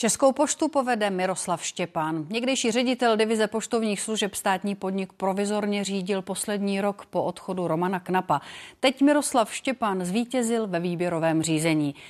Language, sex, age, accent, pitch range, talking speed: Czech, female, 30-49, native, 175-230 Hz, 135 wpm